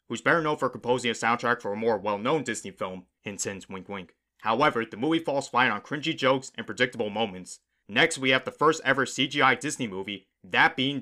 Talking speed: 205 wpm